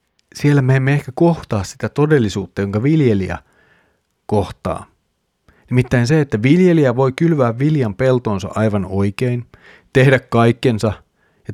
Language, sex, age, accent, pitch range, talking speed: Finnish, male, 30-49, native, 110-135 Hz, 120 wpm